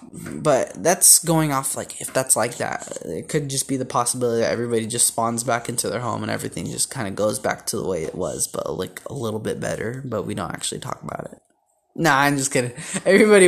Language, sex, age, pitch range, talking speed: English, male, 20-39, 125-160 Hz, 235 wpm